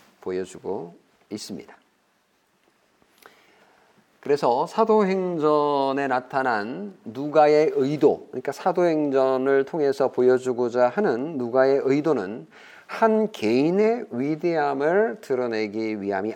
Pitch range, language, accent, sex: 140-220 Hz, Korean, native, male